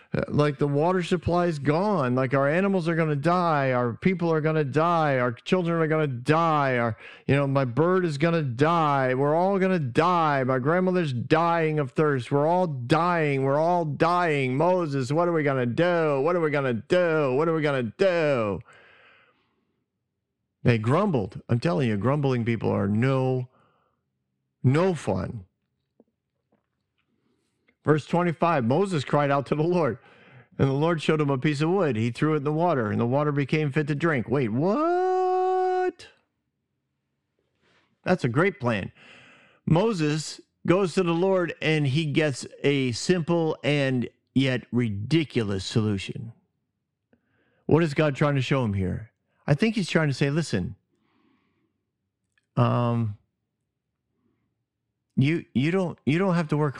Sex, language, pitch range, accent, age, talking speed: male, English, 125-170 Hz, American, 50-69, 165 wpm